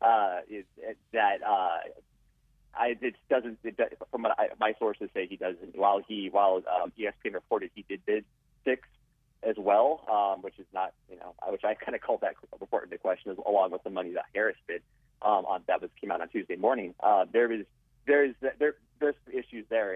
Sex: male